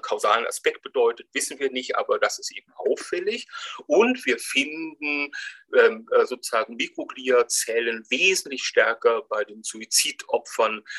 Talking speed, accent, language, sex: 120 wpm, German, German, male